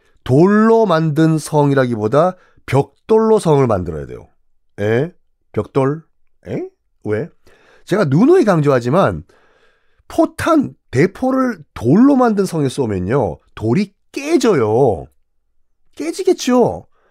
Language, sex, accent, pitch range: Korean, male, native, 125-210 Hz